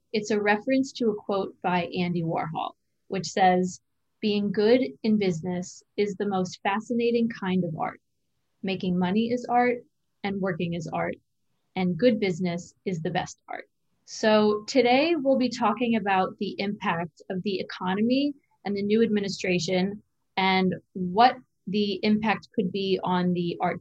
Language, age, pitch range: English, 20-39, 185-220 Hz